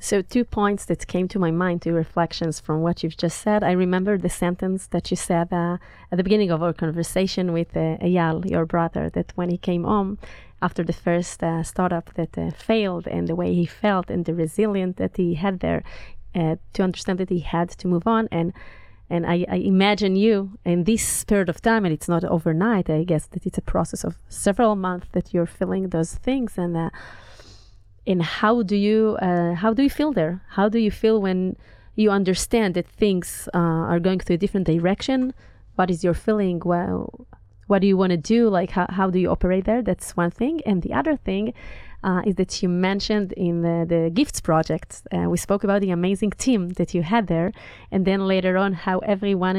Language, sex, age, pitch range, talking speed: Hebrew, female, 30-49, 170-205 Hz, 215 wpm